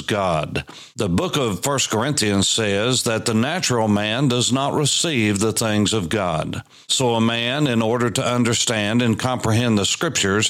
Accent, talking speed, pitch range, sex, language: American, 165 wpm, 105-130 Hz, male, English